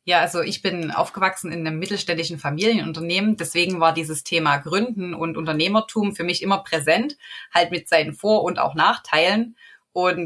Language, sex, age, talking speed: English, female, 20-39, 165 wpm